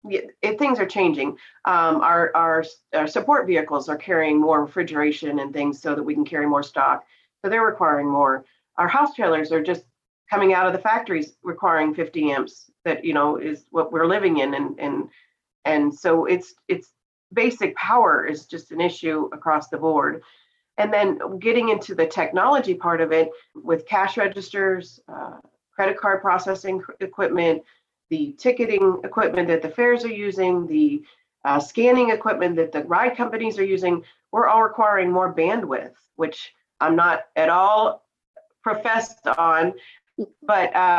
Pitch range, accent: 160-210 Hz, American